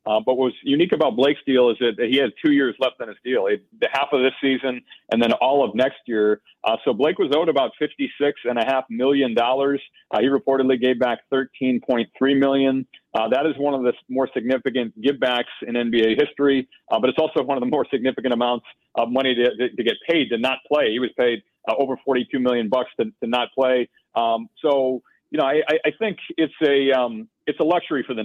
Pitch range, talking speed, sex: 125-140 Hz, 225 wpm, male